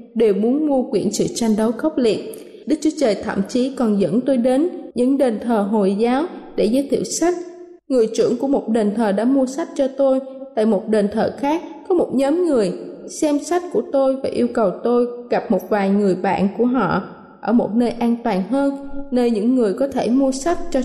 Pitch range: 220-280 Hz